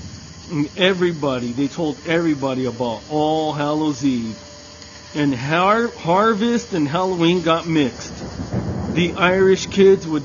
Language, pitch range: English, 140-180 Hz